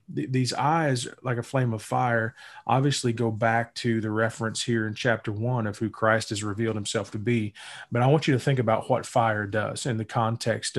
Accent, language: American, English